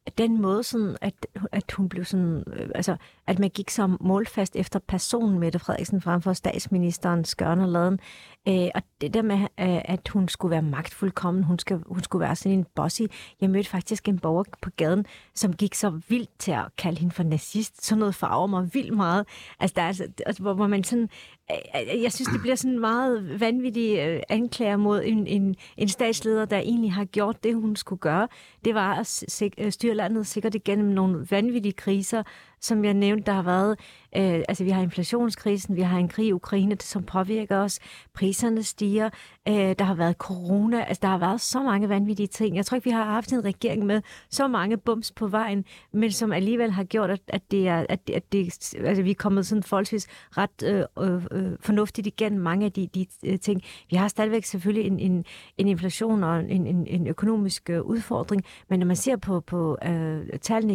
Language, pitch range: Danish, 185-215 Hz